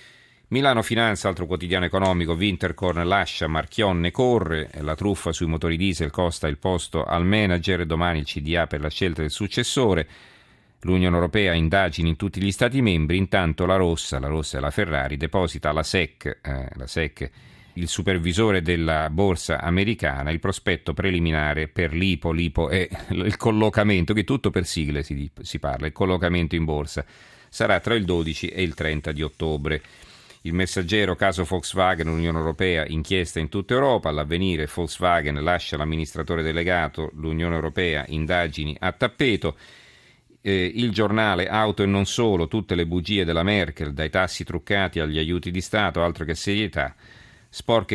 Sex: male